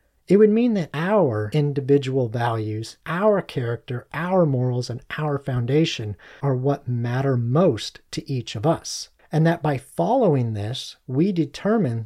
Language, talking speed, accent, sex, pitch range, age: English, 145 wpm, American, male, 130-170 Hz, 40-59